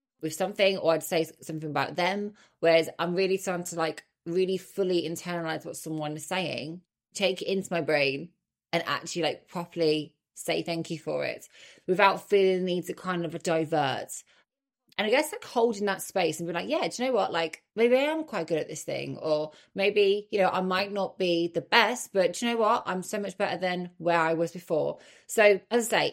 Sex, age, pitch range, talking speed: female, 20-39, 160-190 Hz, 215 wpm